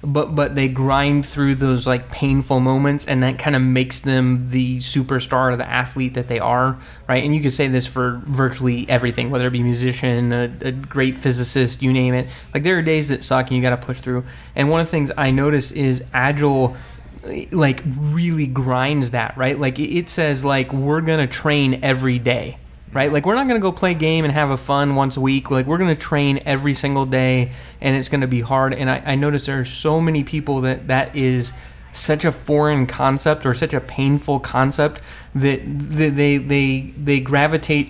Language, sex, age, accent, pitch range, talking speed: English, male, 20-39, American, 130-145 Hz, 215 wpm